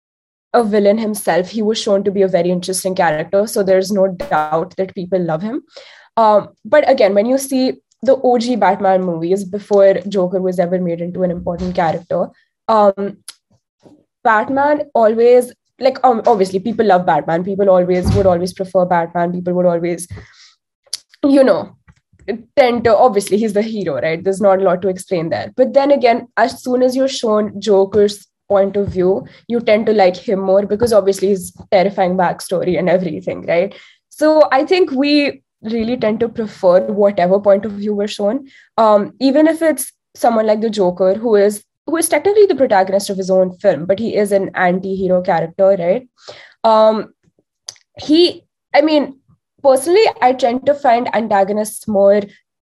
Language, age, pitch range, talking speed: English, 20-39, 190-240 Hz, 170 wpm